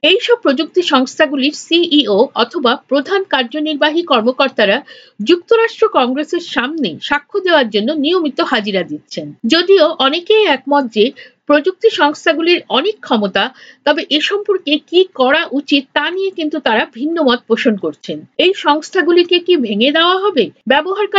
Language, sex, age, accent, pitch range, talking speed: Bengali, female, 50-69, native, 255-360 Hz, 60 wpm